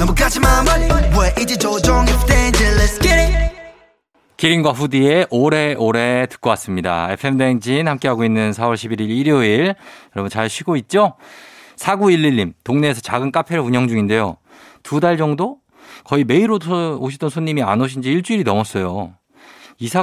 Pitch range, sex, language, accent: 105-155 Hz, male, Korean, native